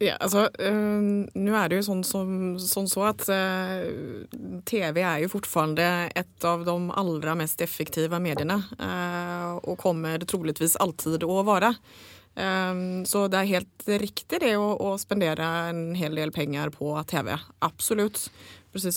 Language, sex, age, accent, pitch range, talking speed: English, female, 20-39, Swedish, 160-210 Hz, 155 wpm